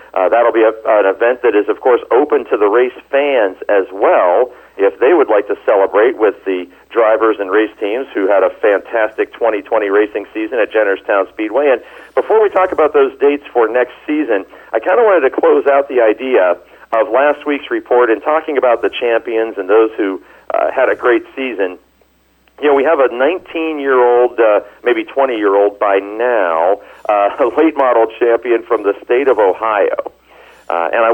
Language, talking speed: English, 185 wpm